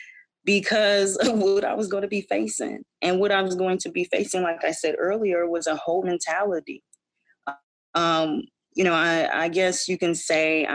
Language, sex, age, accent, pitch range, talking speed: English, female, 20-39, American, 150-195 Hz, 190 wpm